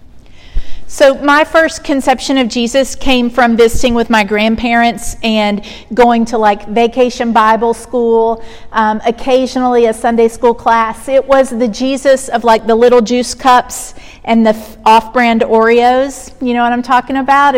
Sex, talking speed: female, 155 wpm